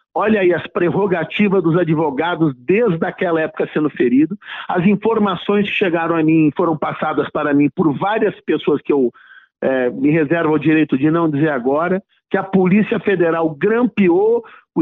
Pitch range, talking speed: 165-230 Hz, 160 wpm